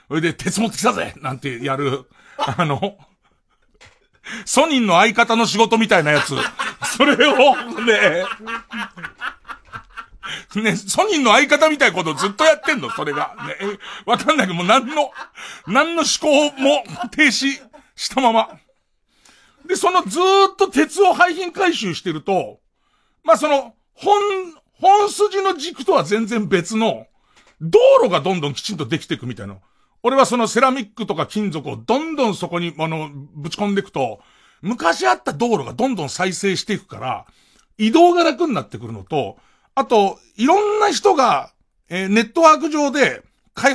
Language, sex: Japanese, male